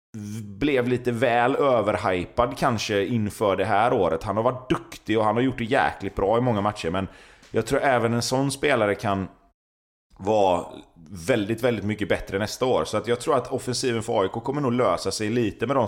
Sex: male